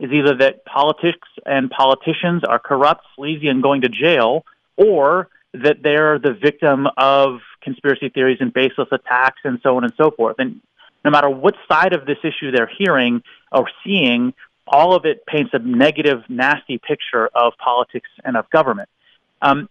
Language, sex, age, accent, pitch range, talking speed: English, male, 30-49, American, 135-170 Hz, 170 wpm